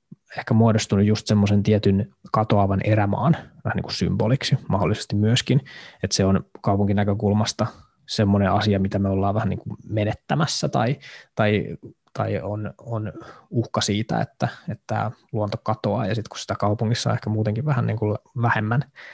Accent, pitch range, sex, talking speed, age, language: native, 105-120 Hz, male, 155 wpm, 20-39, Finnish